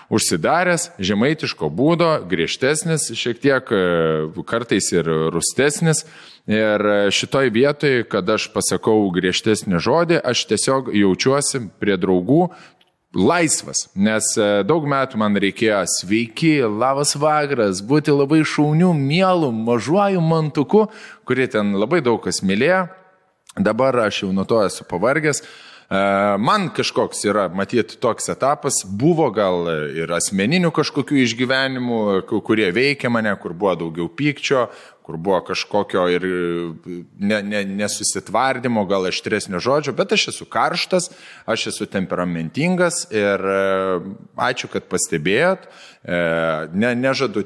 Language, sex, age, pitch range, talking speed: English, male, 20-39, 95-145 Hz, 115 wpm